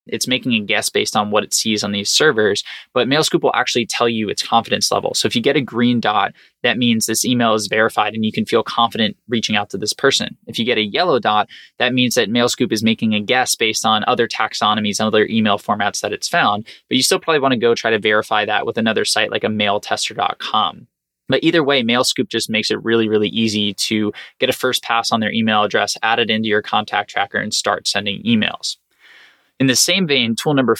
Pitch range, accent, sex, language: 105-125 Hz, American, male, English